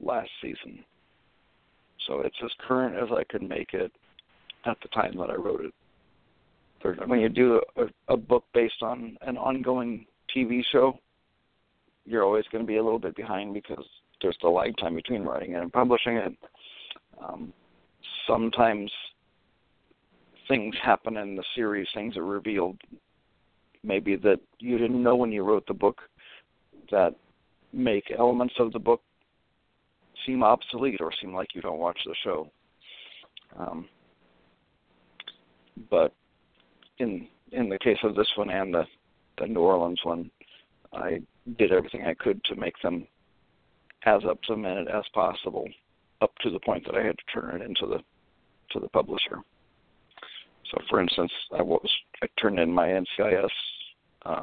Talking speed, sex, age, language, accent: 155 wpm, male, 50-69, English, American